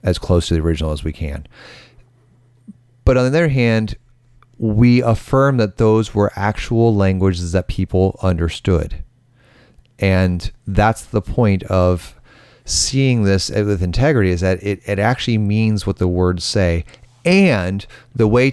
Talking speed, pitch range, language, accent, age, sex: 145 wpm, 95-120 Hz, English, American, 30-49, male